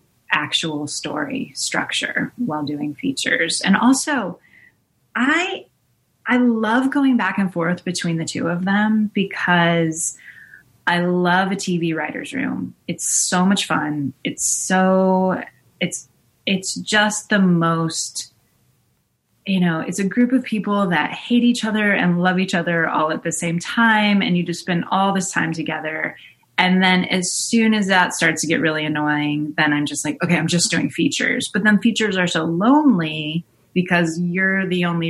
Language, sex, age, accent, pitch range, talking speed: English, female, 20-39, American, 165-210 Hz, 165 wpm